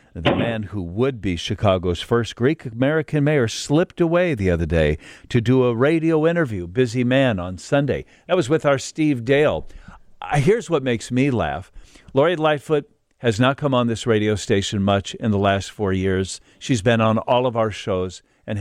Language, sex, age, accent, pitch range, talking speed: English, male, 50-69, American, 95-125 Hz, 185 wpm